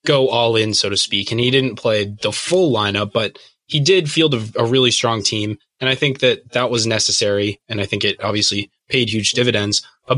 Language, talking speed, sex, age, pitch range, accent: English, 225 wpm, male, 20-39, 105-125 Hz, American